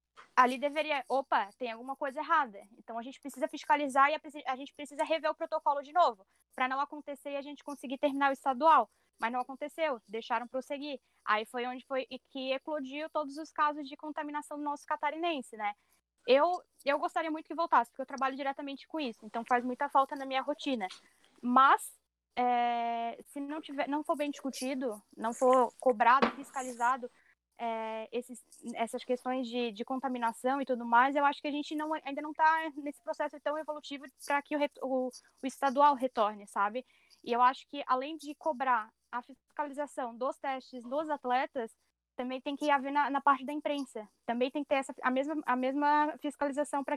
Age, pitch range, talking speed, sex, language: 10-29, 250-300 Hz, 190 wpm, female, Portuguese